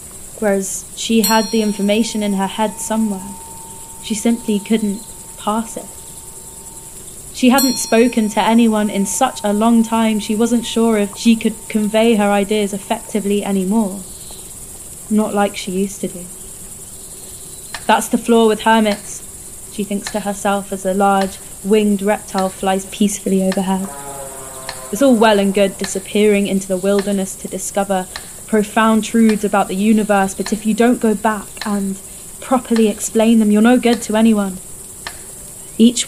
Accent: British